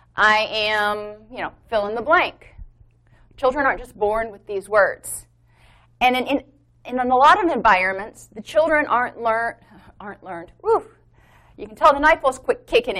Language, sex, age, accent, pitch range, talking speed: English, female, 30-49, American, 205-295 Hz, 175 wpm